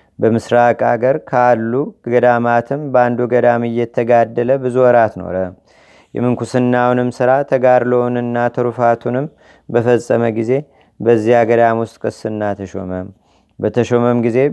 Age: 30-49